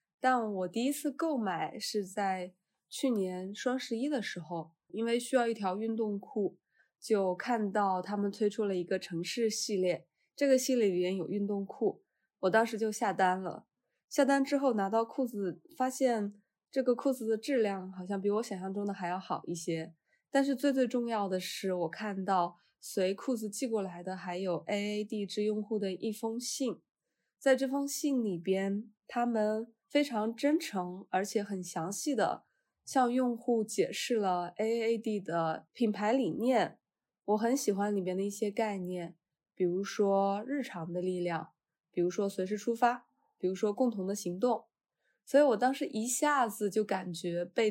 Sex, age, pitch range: female, 20-39, 190-245 Hz